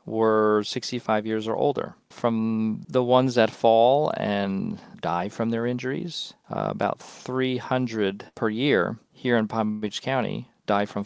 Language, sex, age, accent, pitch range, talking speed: English, male, 40-59, American, 100-120 Hz, 145 wpm